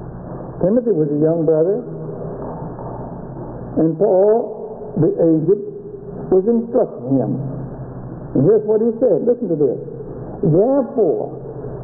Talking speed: 105 wpm